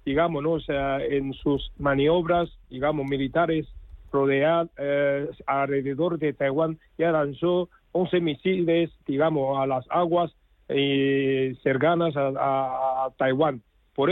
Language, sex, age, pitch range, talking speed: Spanish, male, 50-69, 145-185 Hz, 125 wpm